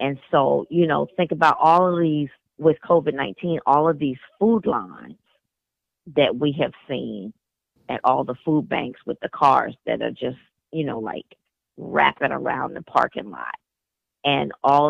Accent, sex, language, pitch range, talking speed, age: American, female, English, 140-170 Hz, 165 wpm, 40-59